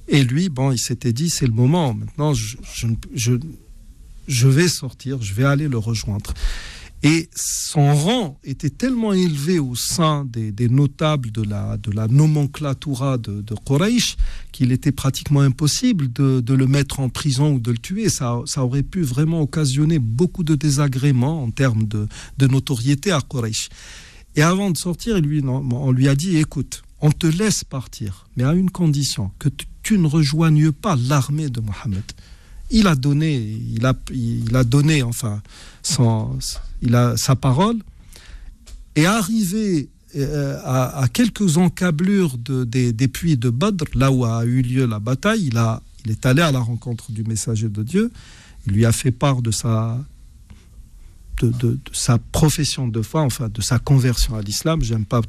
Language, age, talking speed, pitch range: French, 40-59, 180 wpm, 120-155 Hz